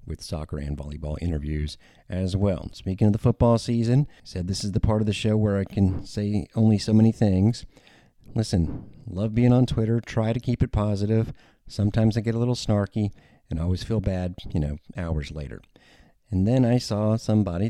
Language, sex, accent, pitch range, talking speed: English, male, American, 80-105 Hz, 195 wpm